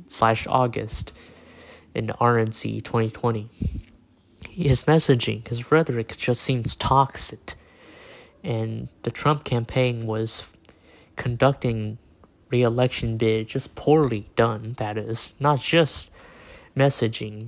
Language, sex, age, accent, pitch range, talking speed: English, male, 20-39, American, 110-125 Hz, 100 wpm